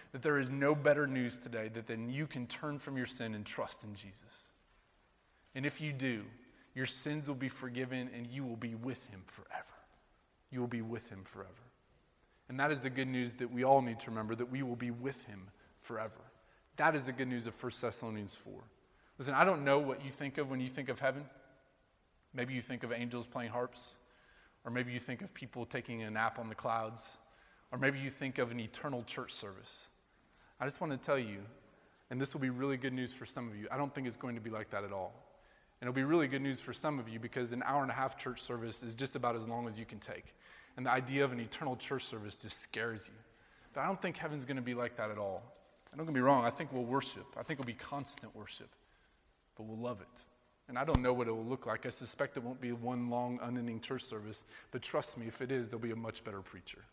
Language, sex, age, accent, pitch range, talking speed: English, male, 30-49, American, 115-135 Hz, 250 wpm